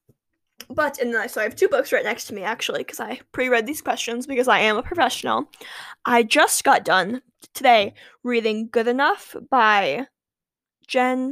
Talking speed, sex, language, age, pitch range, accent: 165 wpm, female, English, 10-29, 230-295 Hz, American